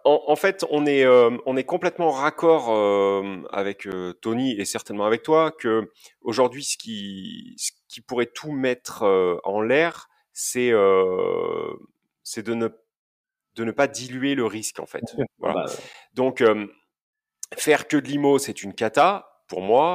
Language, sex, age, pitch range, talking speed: French, male, 30-49, 105-150 Hz, 170 wpm